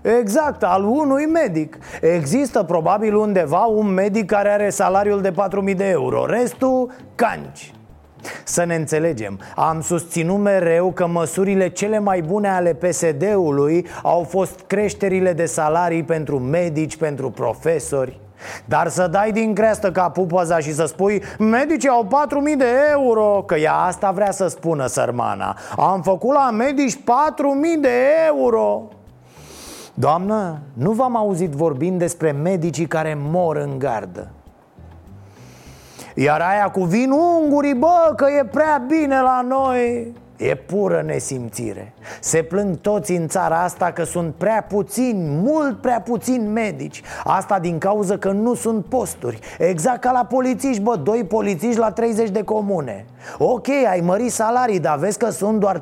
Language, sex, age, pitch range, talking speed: Romanian, male, 30-49, 165-235 Hz, 145 wpm